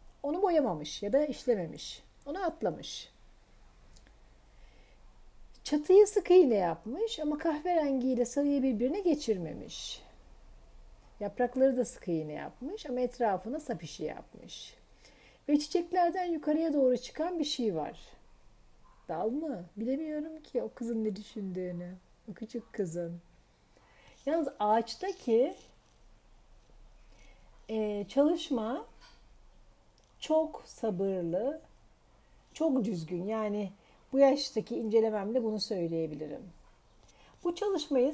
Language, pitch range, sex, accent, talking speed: Turkish, 210-300 Hz, female, native, 95 wpm